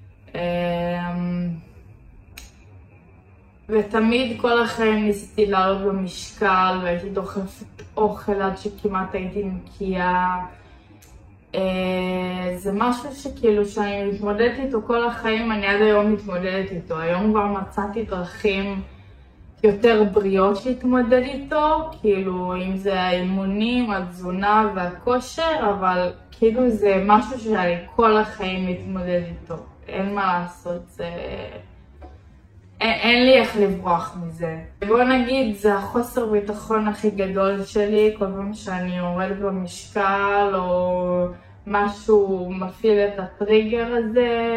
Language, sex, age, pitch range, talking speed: Hebrew, female, 20-39, 180-215 Hz, 105 wpm